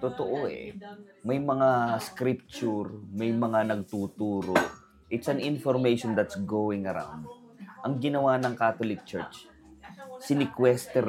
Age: 30-49